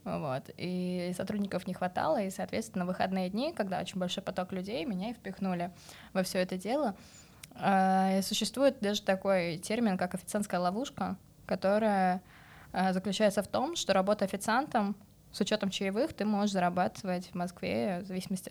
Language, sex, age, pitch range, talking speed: Russian, female, 20-39, 185-205 Hz, 145 wpm